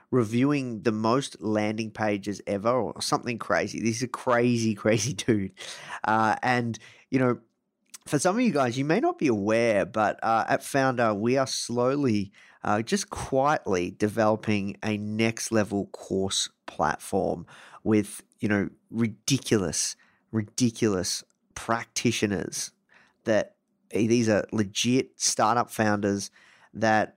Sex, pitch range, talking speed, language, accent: male, 105-120 Hz, 125 wpm, English, Australian